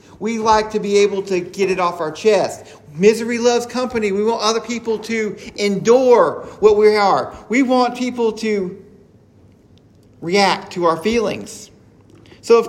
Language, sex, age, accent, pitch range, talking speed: English, male, 40-59, American, 195-250 Hz, 155 wpm